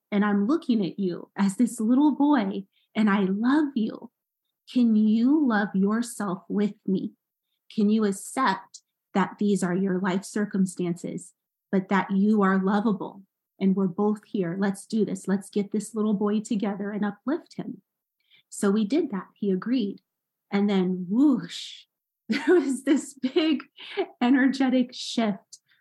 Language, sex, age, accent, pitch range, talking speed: English, female, 30-49, American, 190-230 Hz, 150 wpm